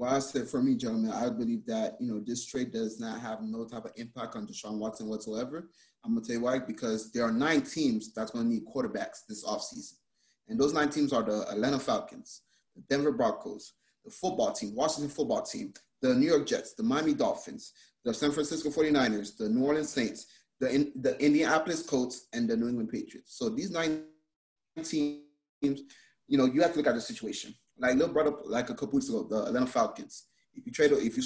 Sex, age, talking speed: male, 30-49, 215 wpm